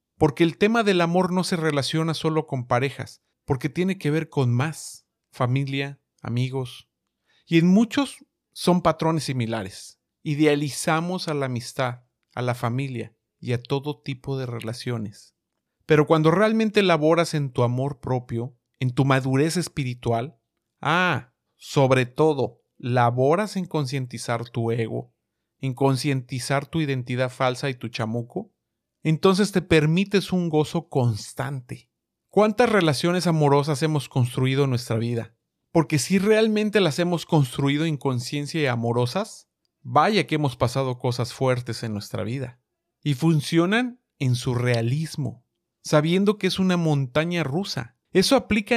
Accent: Mexican